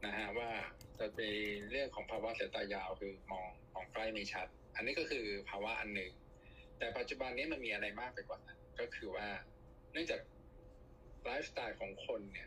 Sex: male